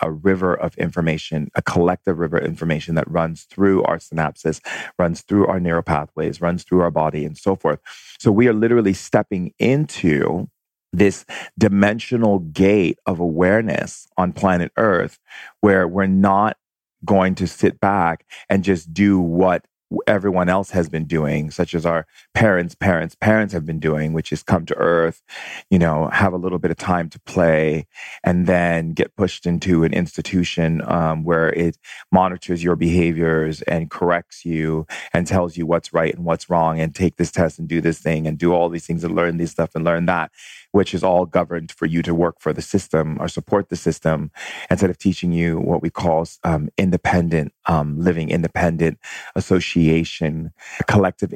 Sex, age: male, 30-49